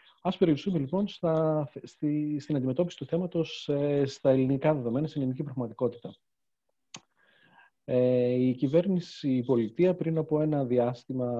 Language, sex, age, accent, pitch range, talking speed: Greek, male, 40-59, native, 120-155 Hz, 130 wpm